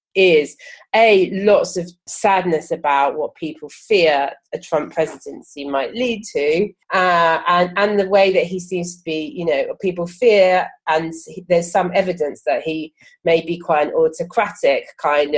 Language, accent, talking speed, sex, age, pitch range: English, British, 160 wpm, female, 30-49, 155-200 Hz